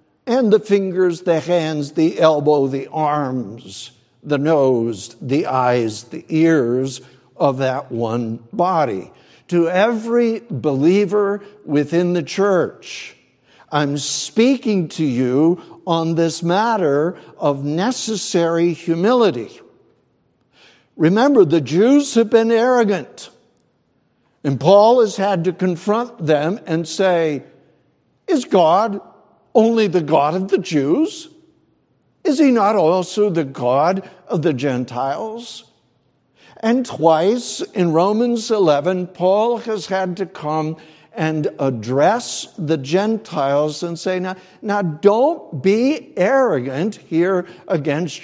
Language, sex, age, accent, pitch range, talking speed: English, male, 60-79, American, 150-210 Hz, 110 wpm